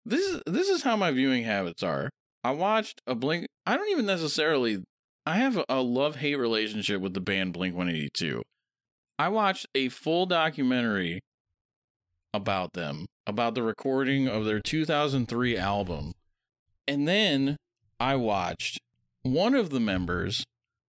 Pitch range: 100-145 Hz